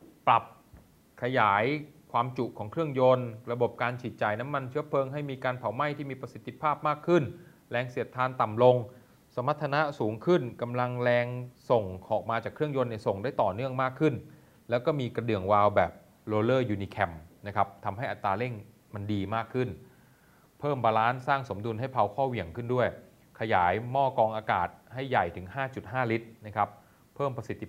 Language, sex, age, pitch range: Thai, male, 30-49, 110-145 Hz